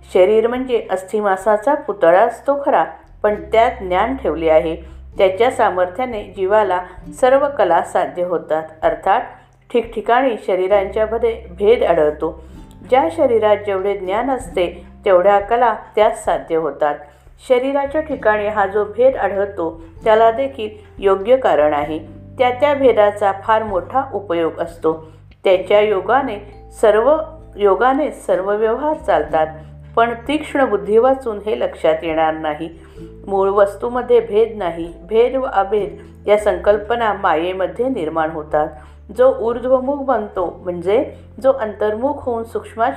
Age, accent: 50-69, native